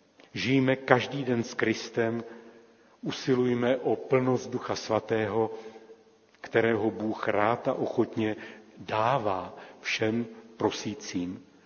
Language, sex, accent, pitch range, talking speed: Czech, male, native, 110-125 Hz, 95 wpm